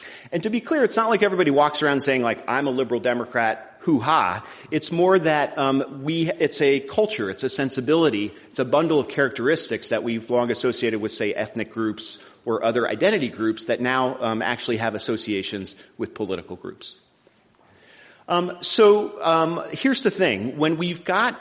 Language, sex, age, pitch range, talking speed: English, male, 40-59, 115-160 Hz, 175 wpm